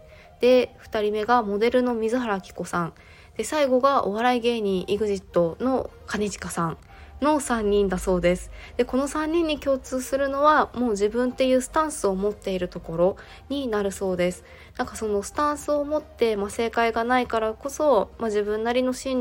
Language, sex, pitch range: Japanese, female, 195-250 Hz